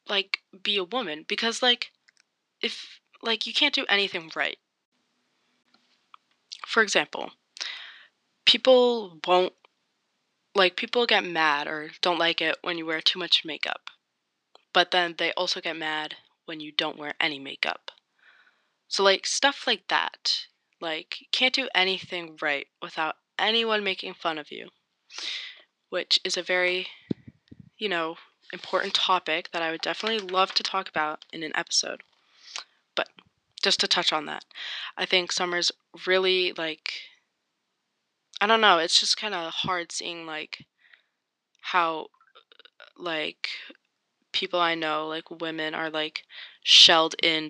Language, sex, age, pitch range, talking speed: English, female, 20-39, 160-190 Hz, 140 wpm